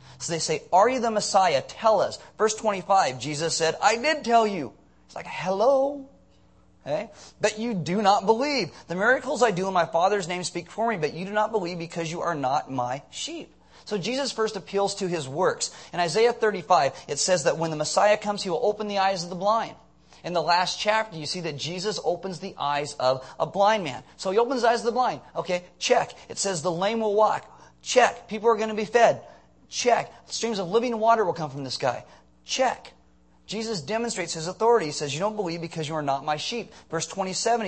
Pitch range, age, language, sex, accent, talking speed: 155-220 Hz, 30-49, English, male, American, 220 wpm